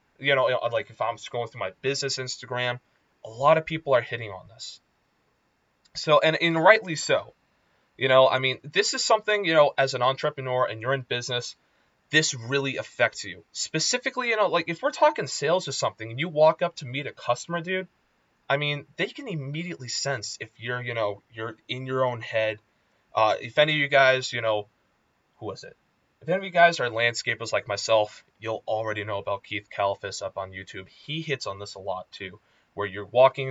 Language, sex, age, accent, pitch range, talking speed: English, male, 20-39, American, 110-160 Hz, 205 wpm